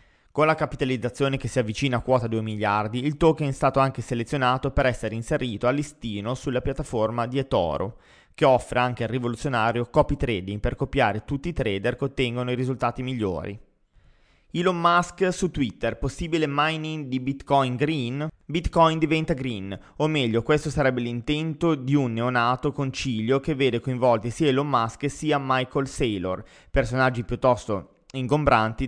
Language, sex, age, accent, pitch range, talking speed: Italian, male, 20-39, native, 115-140 Hz, 155 wpm